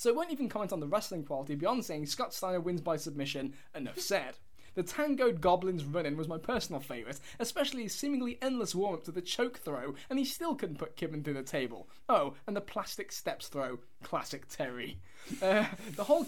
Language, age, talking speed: English, 10-29, 205 wpm